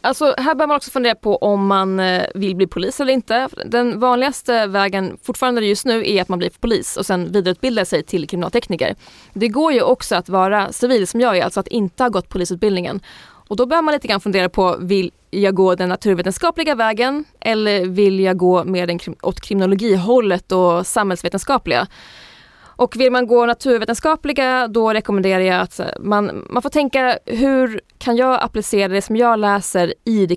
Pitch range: 185-240 Hz